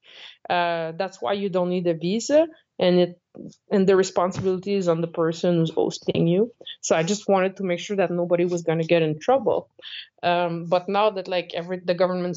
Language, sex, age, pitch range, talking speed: English, female, 20-39, 175-220 Hz, 210 wpm